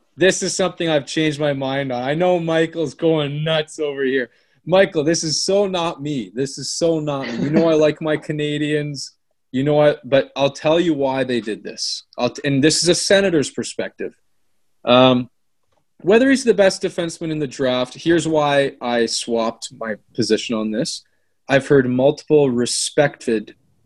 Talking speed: 180 wpm